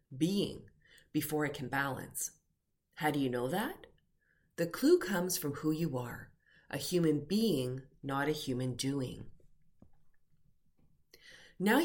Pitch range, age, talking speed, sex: 130-180 Hz, 30-49, 125 wpm, female